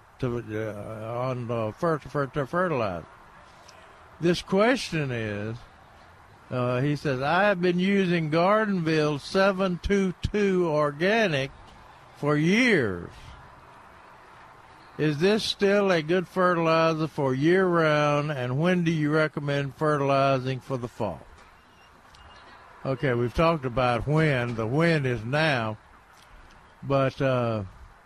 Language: English